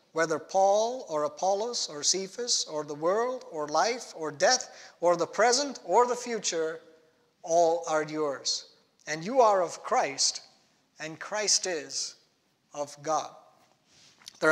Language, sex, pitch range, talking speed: English, male, 150-200 Hz, 135 wpm